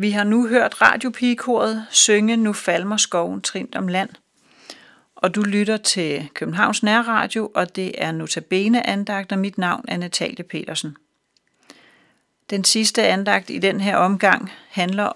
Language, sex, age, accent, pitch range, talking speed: Danish, female, 40-59, native, 175-210 Hz, 145 wpm